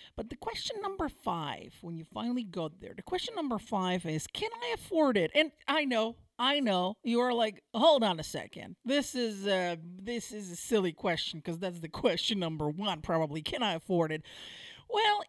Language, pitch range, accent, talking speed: English, 165-265 Hz, American, 200 wpm